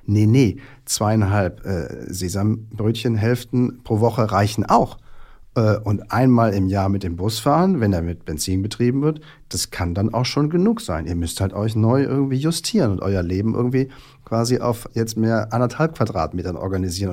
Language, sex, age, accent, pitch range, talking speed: German, male, 50-69, German, 100-130 Hz, 170 wpm